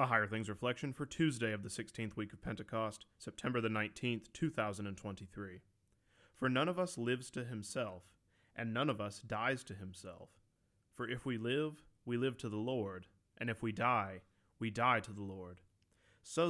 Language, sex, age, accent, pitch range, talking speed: English, male, 30-49, American, 100-130 Hz, 180 wpm